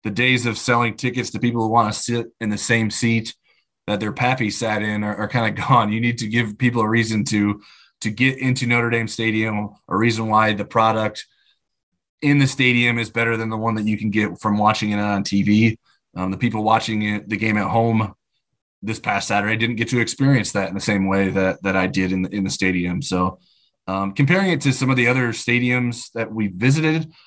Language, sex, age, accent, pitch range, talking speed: English, male, 20-39, American, 105-120 Hz, 230 wpm